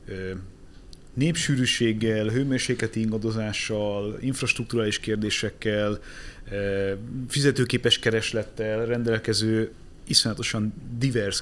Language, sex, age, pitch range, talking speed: Hungarian, male, 30-49, 100-125 Hz, 55 wpm